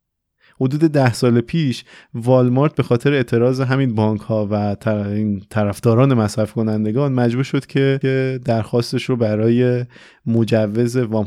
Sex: male